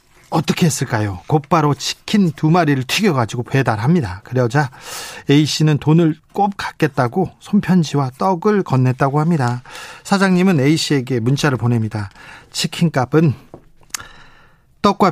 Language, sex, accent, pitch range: Korean, male, native, 135-175 Hz